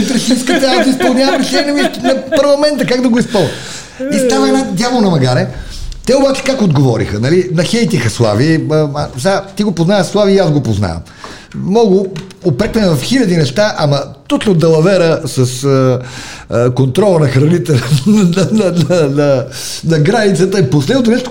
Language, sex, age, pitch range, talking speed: Bulgarian, male, 50-69, 125-195 Hz, 165 wpm